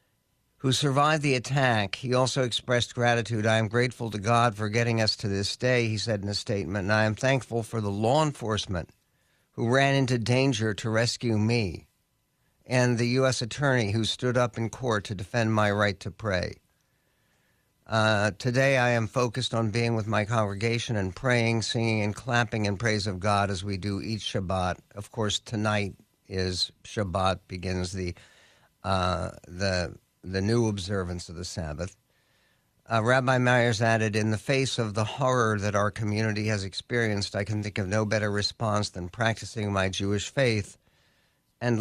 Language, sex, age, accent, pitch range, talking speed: English, male, 60-79, American, 100-120 Hz, 170 wpm